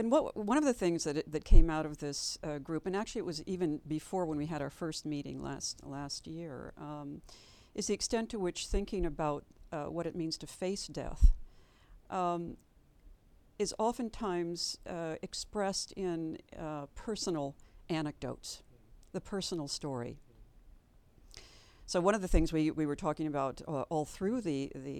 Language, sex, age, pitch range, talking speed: English, female, 60-79, 150-190 Hz, 170 wpm